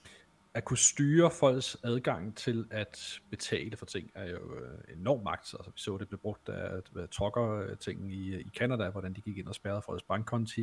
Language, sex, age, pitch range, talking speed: Danish, male, 40-59, 105-120 Hz, 190 wpm